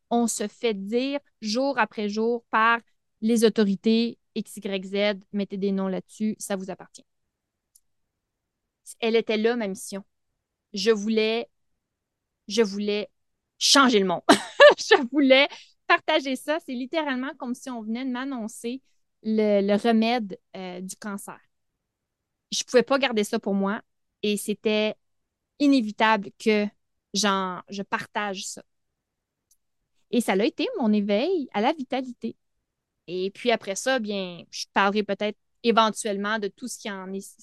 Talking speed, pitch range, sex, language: 140 wpm, 200-240 Hz, female, French